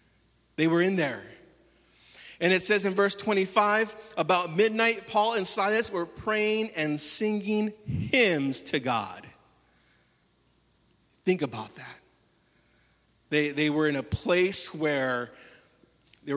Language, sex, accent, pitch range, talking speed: English, male, American, 135-190 Hz, 120 wpm